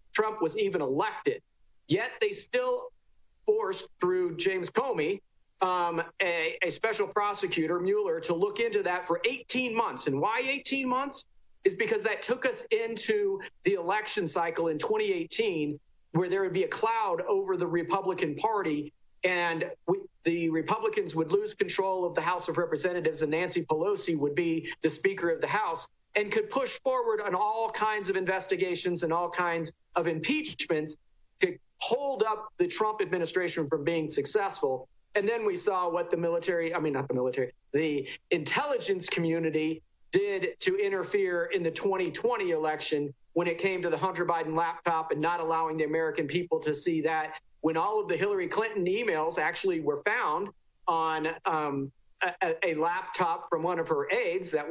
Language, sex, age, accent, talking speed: English, male, 40-59, American, 170 wpm